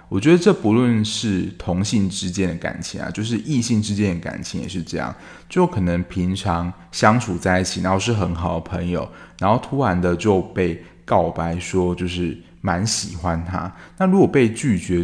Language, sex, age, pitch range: Chinese, male, 20-39, 90-110 Hz